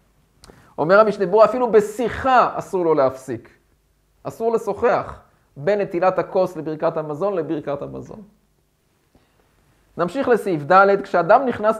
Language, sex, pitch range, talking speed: Hebrew, male, 165-220 Hz, 105 wpm